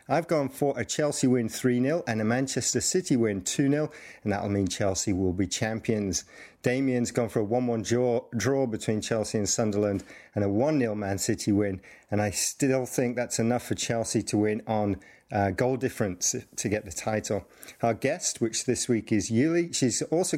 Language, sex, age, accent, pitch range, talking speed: English, male, 40-59, British, 105-125 Hz, 185 wpm